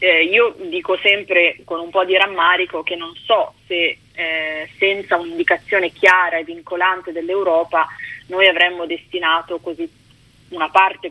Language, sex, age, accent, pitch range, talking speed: Italian, female, 20-39, native, 165-195 Hz, 140 wpm